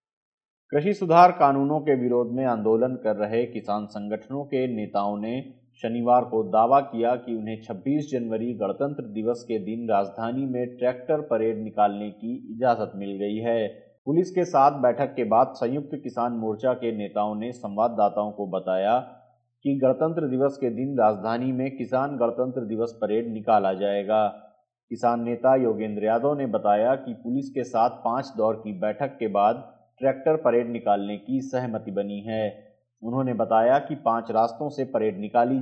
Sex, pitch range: male, 110-130 Hz